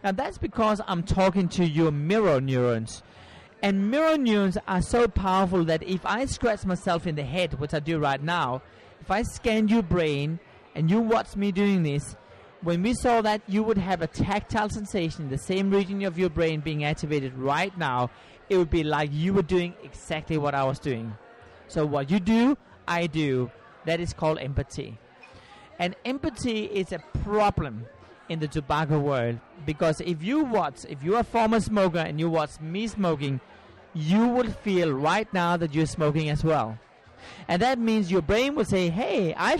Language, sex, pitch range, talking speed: English, male, 155-210 Hz, 190 wpm